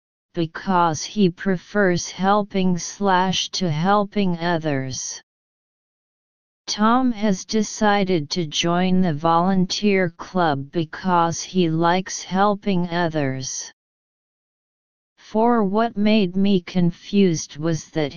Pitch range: 165-200 Hz